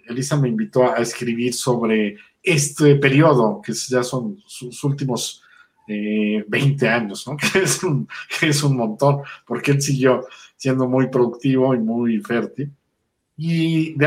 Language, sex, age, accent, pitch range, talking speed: Spanish, male, 50-69, Mexican, 115-140 Hz, 150 wpm